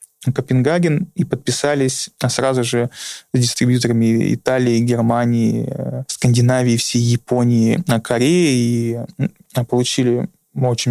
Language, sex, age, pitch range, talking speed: Russian, male, 20-39, 120-140 Hz, 90 wpm